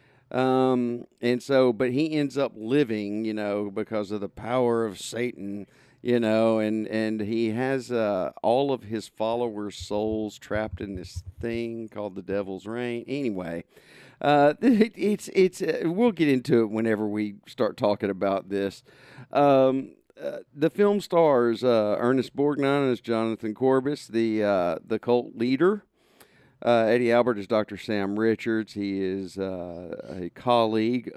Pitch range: 110-135 Hz